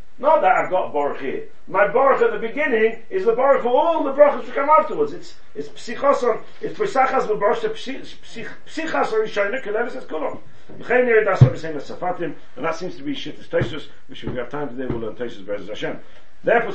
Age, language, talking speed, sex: 40-59, English, 185 wpm, male